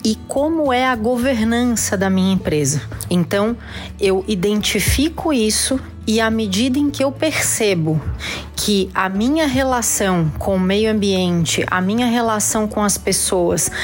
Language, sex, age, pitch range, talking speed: Portuguese, female, 30-49, 185-235 Hz, 145 wpm